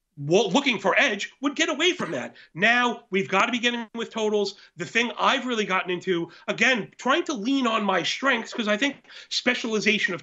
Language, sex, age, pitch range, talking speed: English, male, 40-59, 190-255 Hz, 200 wpm